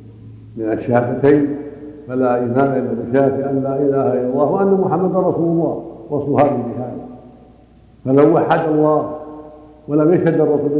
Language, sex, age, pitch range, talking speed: Arabic, male, 60-79, 130-150 Hz, 130 wpm